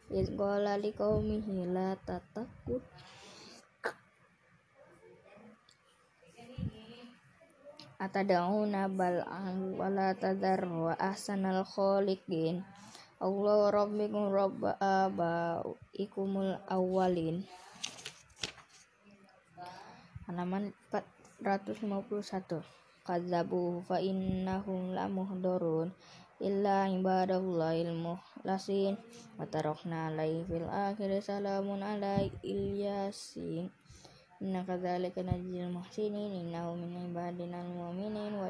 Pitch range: 175-195 Hz